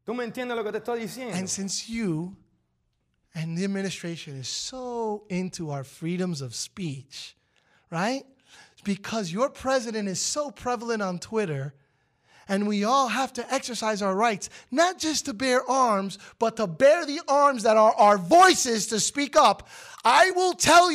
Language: English